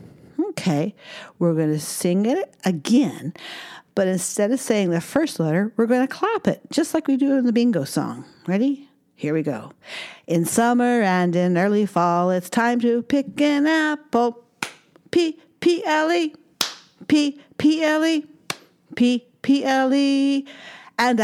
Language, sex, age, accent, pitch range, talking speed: English, female, 50-69, American, 185-275 Hz, 160 wpm